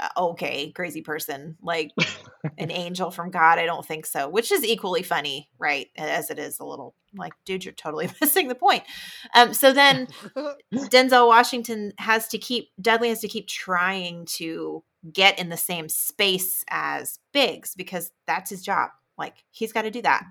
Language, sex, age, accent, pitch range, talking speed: English, female, 30-49, American, 170-235 Hz, 175 wpm